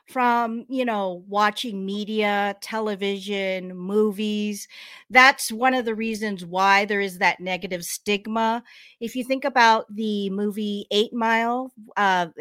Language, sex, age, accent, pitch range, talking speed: English, female, 40-59, American, 185-235 Hz, 130 wpm